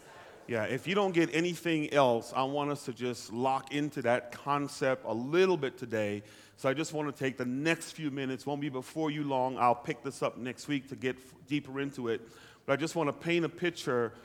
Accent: American